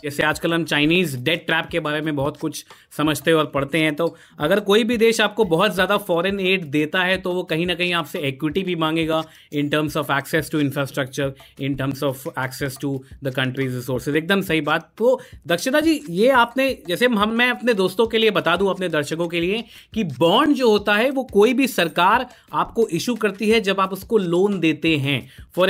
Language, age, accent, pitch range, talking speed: Hindi, 30-49, native, 155-205 Hz, 210 wpm